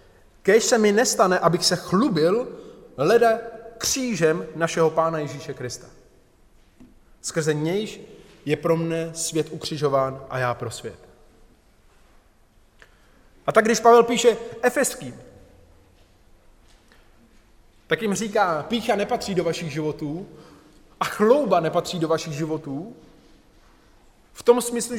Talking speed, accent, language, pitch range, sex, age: 115 wpm, native, Czech, 150-230 Hz, male, 20-39